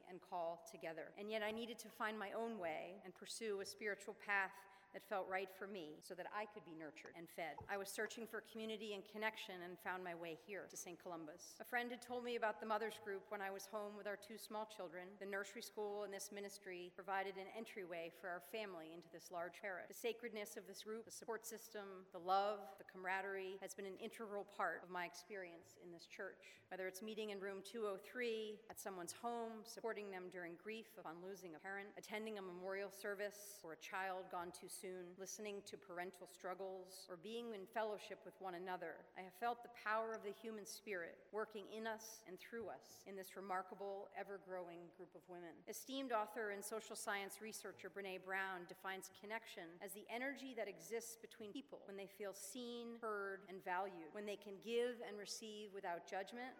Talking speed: 205 wpm